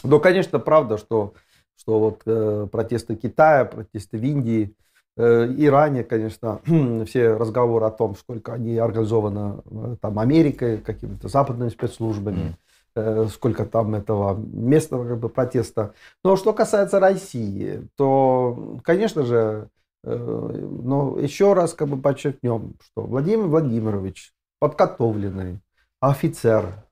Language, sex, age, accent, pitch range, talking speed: Russian, male, 40-59, native, 110-150 Hz, 105 wpm